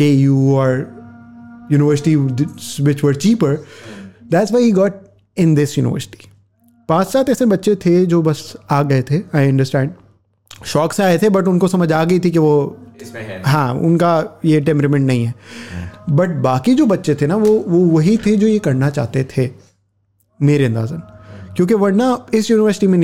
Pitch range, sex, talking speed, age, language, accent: 125-175 Hz, male, 95 wpm, 30-49, English, Indian